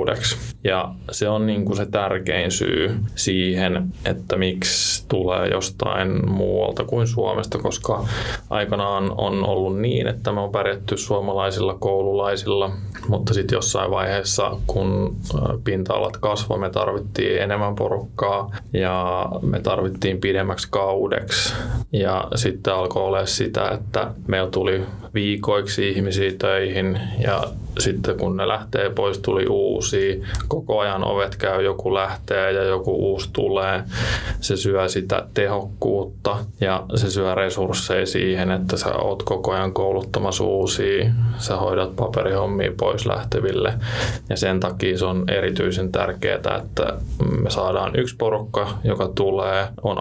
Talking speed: 130 wpm